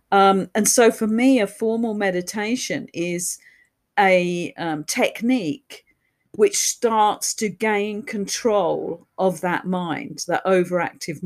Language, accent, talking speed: English, British, 115 wpm